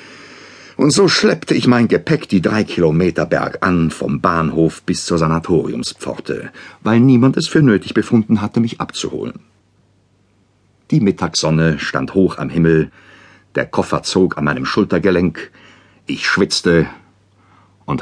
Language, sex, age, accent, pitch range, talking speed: German, male, 60-79, German, 90-110 Hz, 135 wpm